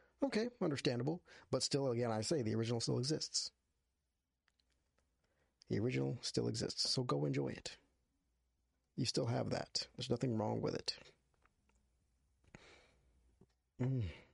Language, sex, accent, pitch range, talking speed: English, male, American, 70-115 Hz, 120 wpm